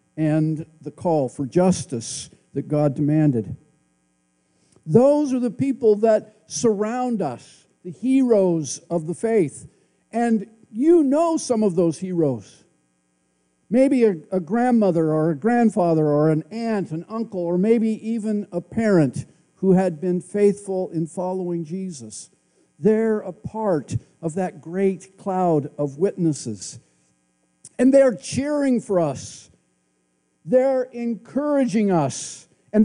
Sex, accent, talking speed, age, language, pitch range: male, American, 125 wpm, 50-69, English, 150-230 Hz